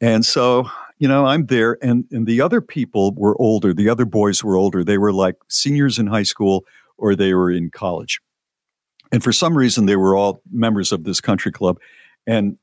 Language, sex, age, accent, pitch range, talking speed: English, male, 50-69, American, 95-125 Hz, 205 wpm